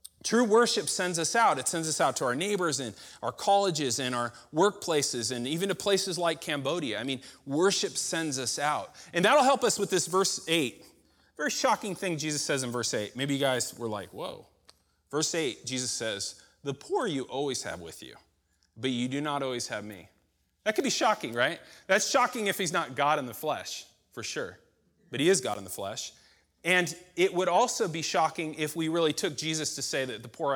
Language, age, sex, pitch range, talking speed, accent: English, 30-49, male, 130-190 Hz, 215 wpm, American